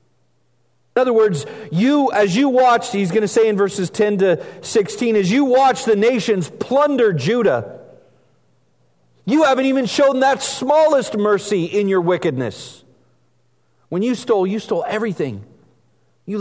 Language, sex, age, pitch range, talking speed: English, male, 40-59, 135-220 Hz, 145 wpm